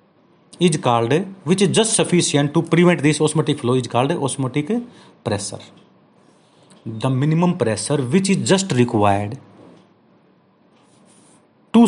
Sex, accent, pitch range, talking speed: male, native, 125-185 Hz, 110 wpm